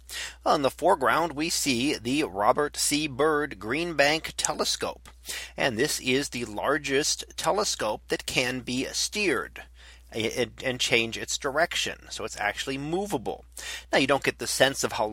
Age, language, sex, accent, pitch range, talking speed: 40-59, English, male, American, 115-150 Hz, 150 wpm